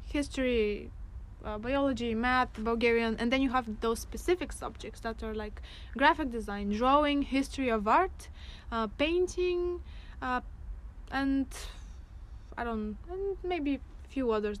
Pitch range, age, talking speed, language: 220-270 Hz, 20-39, 130 wpm, English